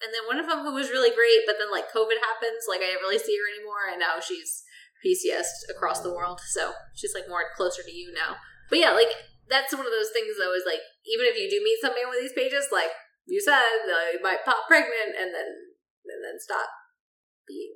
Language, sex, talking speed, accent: English, female, 235 wpm, American